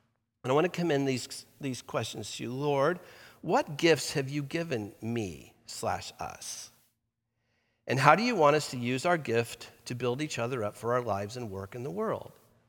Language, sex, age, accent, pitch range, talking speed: English, male, 50-69, American, 115-140 Hz, 200 wpm